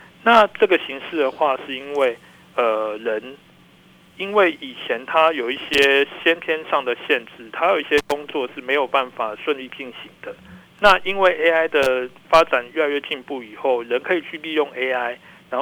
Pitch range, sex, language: 140-200 Hz, male, Chinese